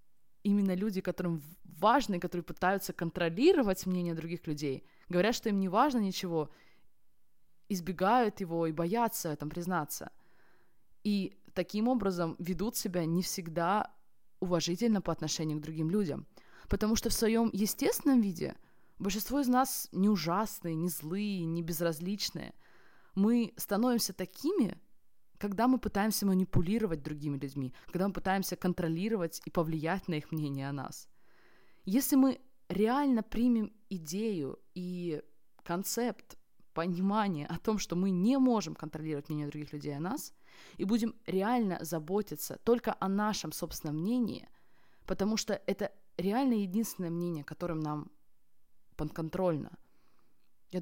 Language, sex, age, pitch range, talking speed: Russian, female, 20-39, 165-215 Hz, 130 wpm